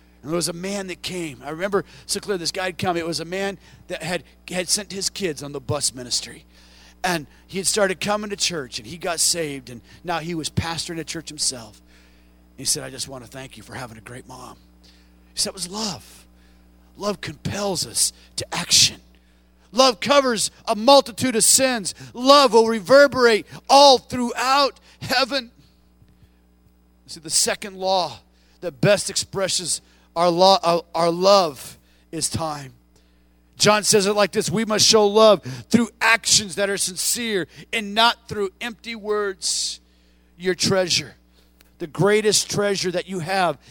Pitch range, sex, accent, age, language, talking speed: 130-210 Hz, male, American, 40-59, English, 170 wpm